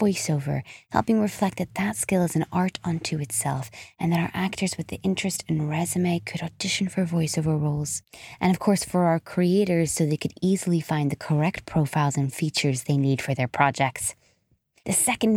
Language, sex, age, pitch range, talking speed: English, female, 20-39, 145-190 Hz, 185 wpm